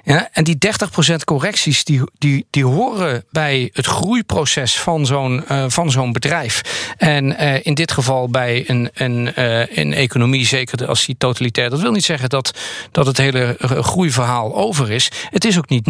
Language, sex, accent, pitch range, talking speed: Dutch, male, Dutch, 130-170 Hz, 155 wpm